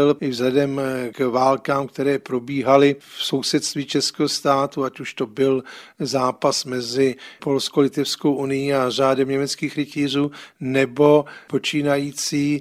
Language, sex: Czech, male